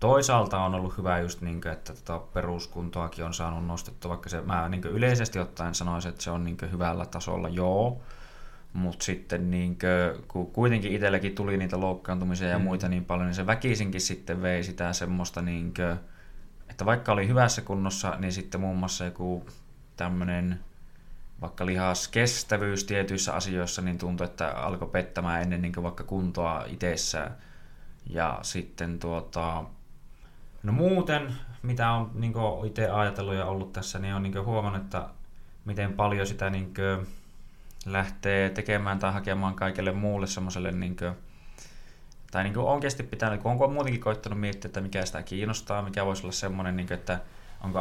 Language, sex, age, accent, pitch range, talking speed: Finnish, male, 20-39, native, 90-100 Hz, 145 wpm